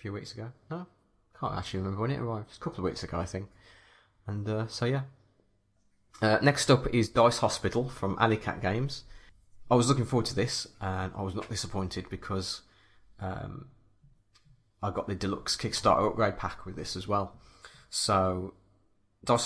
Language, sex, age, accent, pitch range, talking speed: English, male, 20-39, British, 95-110 Hz, 180 wpm